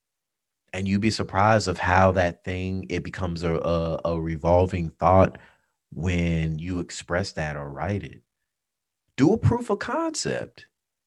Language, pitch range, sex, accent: English, 95-145 Hz, male, American